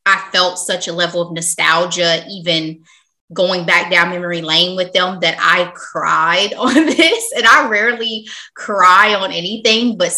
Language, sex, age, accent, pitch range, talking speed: English, female, 20-39, American, 165-185 Hz, 160 wpm